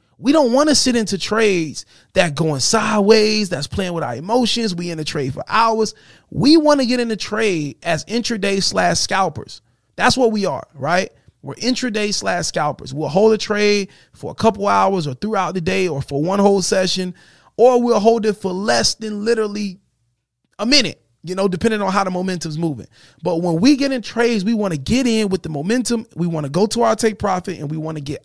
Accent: American